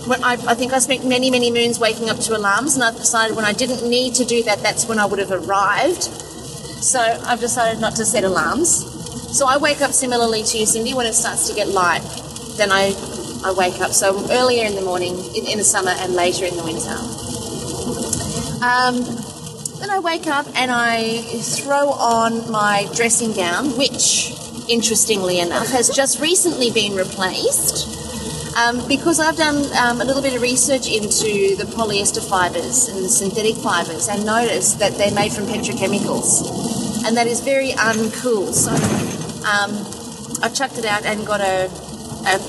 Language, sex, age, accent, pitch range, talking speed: English, female, 30-49, Australian, 200-245 Hz, 180 wpm